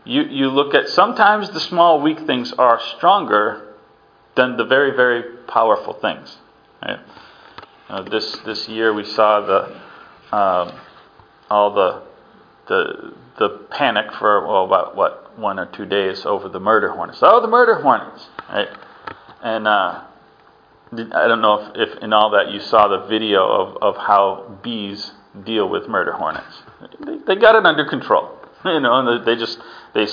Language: English